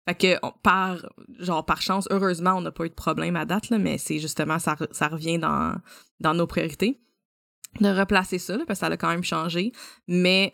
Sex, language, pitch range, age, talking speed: female, French, 165-190 Hz, 20-39, 230 wpm